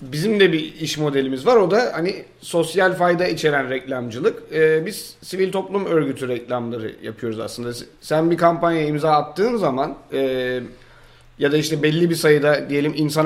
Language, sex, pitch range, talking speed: Turkish, male, 135-170 Hz, 165 wpm